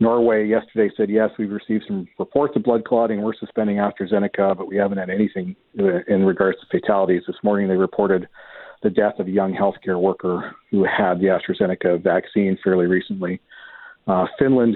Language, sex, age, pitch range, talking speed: English, male, 50-69, 95-115 Hz, 175 wpm